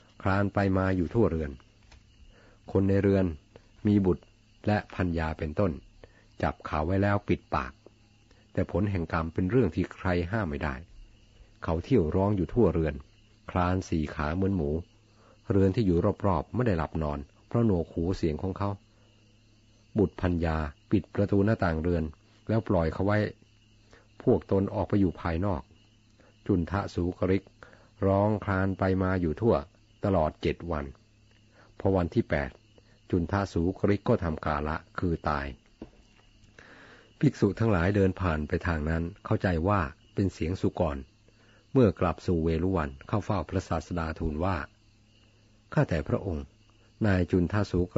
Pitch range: 85-105 Hz